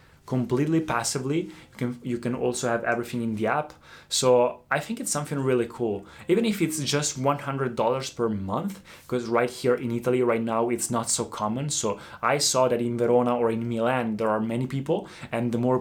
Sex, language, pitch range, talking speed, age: male, Italian, 115-135 Hz, 200 wpm, 20-39